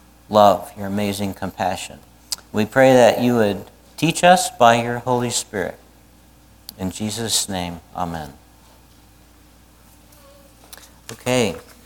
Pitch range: 85-135 Hz